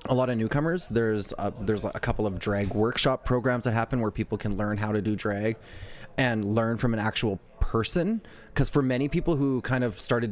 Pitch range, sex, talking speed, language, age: 105-115 Hz, male, 215 wpm, English, 20-39